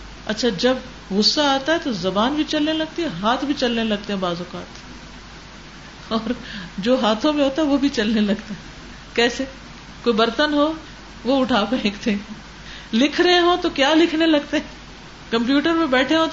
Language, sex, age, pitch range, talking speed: Urdu, female, 50-69, 195-265 Hz, 175 wpm